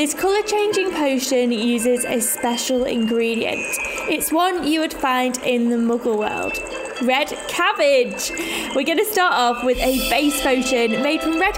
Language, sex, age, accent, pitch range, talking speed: English, female, 10-29, British, 235-320 Hz, 160 wpm